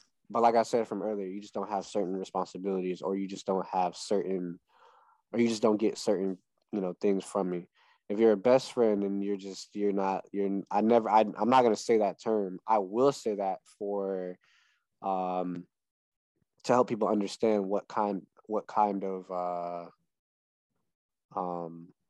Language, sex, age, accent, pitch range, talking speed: English, male, 20-39, American, 90-110 Hz, 180 wpm